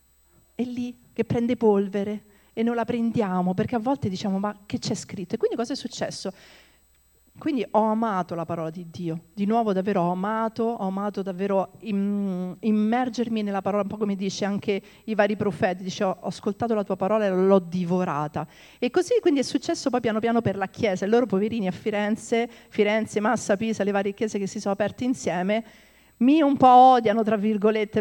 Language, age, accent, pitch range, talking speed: Italian, 50-69, native, 200-235 Hz, 195 wpm